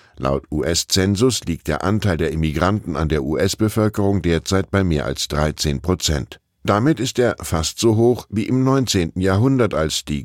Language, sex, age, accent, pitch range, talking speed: German, male, 10-29, German, 80-105 Hz, 165 wpm